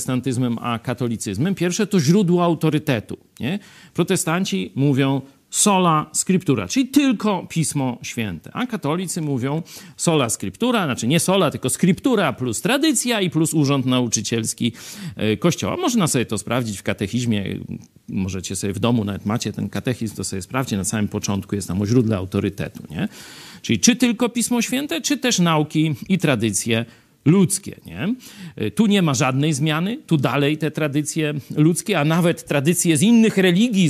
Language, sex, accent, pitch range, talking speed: Polish, male, native, 120-180 Hz, 150 wpm